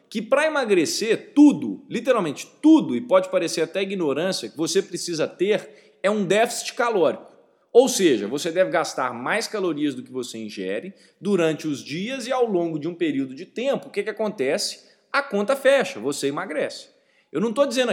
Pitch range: 170-270 Hz